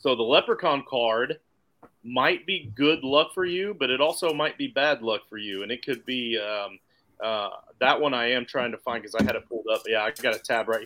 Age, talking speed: 30-49, 245 wpm